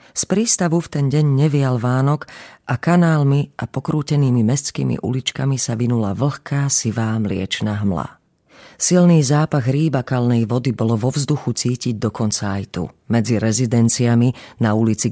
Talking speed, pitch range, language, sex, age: 135 wpm, 115-150 Hz, Slovak, female, 40-59